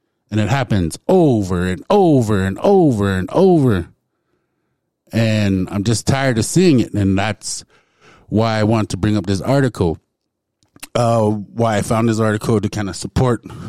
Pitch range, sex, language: 95-115 Hz, male, English